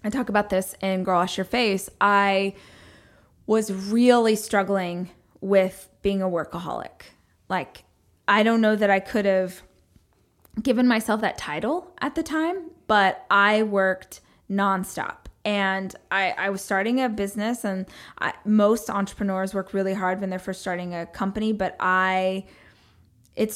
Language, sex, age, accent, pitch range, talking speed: English, female, 20-39, American, 190-215 Hz, 150 wpm